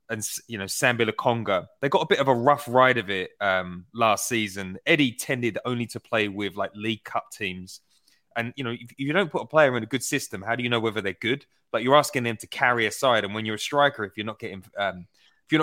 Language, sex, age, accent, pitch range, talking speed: English, male, 20-39, British, 110-140 Hz, 265 wpm